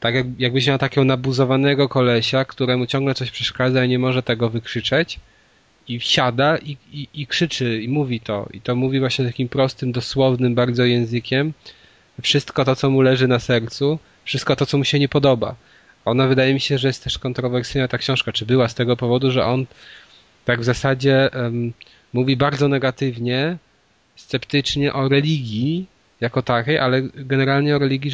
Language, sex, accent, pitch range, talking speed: Polish, male, native, 115-135 Hz, 170 wpm